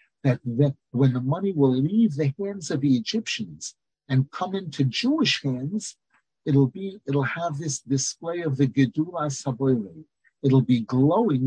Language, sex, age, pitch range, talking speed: English, male, 50-69, 135-160 Hz, 155 wpm